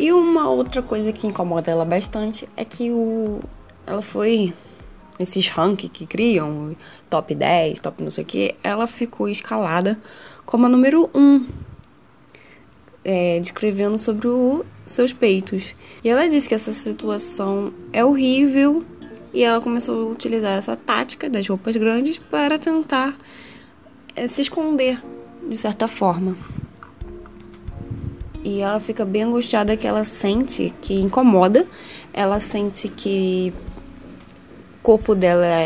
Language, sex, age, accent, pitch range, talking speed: Portuguese, female, 10-29, Brazilian, 180-245 Hz, 135 wpm